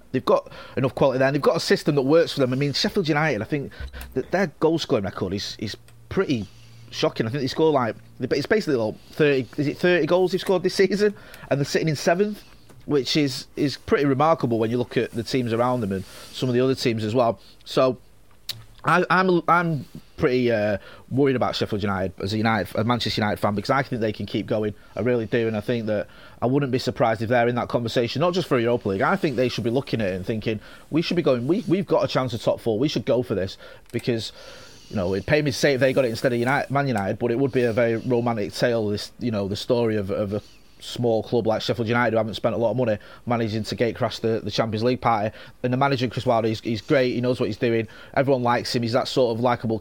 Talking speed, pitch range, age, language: 265 wpm, 115-140 Hz, 30-49, English